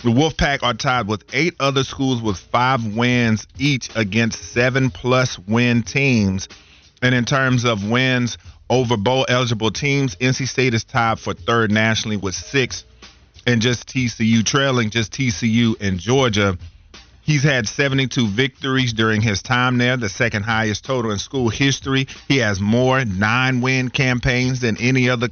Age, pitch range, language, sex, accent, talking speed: 40-59, 110-135 Hz, English, male, American, 160 wpm